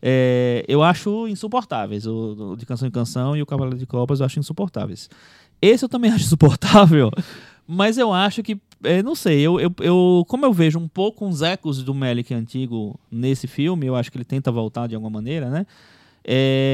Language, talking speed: Portuguese, 195 wpm